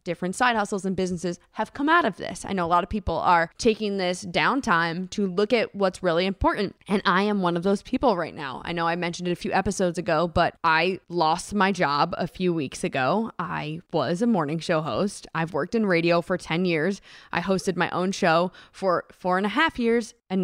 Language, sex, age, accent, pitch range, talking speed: English, female, 20-39, American, 170-210 Hz, 230 wpm